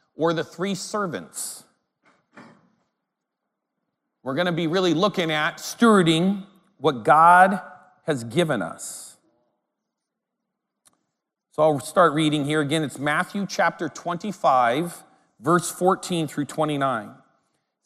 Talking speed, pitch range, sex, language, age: 100 wpm, 140-185 Hz, male, English, 40-59